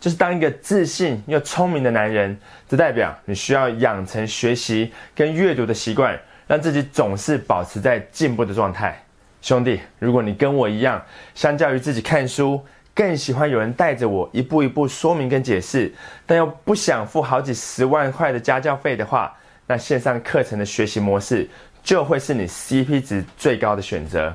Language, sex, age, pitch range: Chinese, male, 20-39, 125-165 Hz